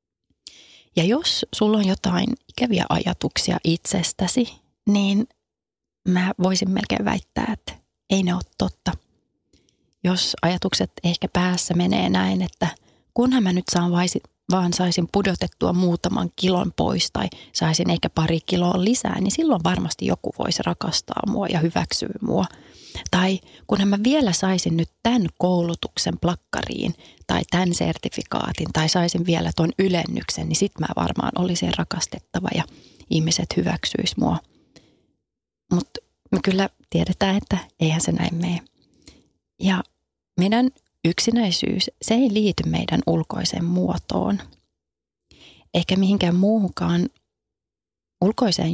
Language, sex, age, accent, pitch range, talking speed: Finnish, female, 30-49, native, 170-205 Hz, 125 wpm